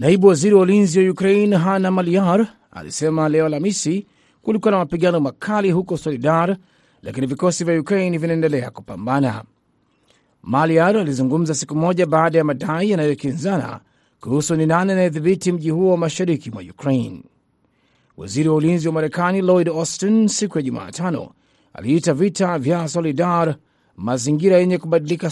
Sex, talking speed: male, 135 wpm